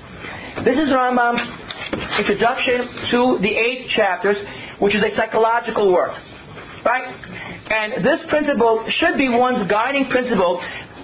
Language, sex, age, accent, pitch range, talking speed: English, male, 50-69, American, 225-280 Hz, 120 wpm